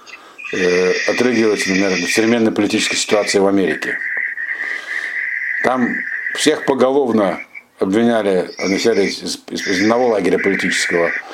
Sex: male